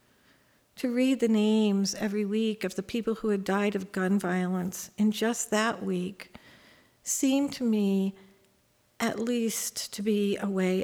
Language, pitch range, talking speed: English, 185-230 Hz, 155 wpm